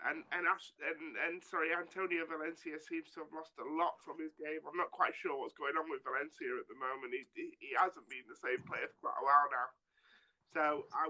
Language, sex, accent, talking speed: English, male, British, 230 wpm